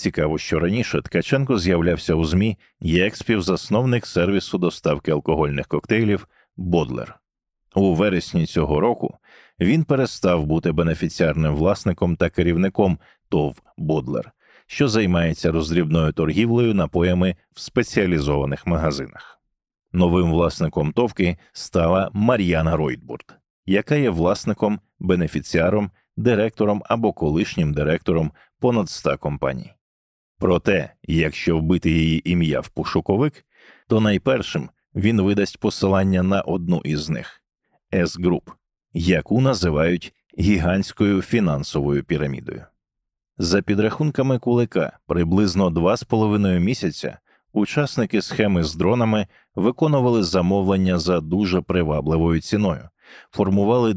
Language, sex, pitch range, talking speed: English, male, 85-110 Hz, 105 wpm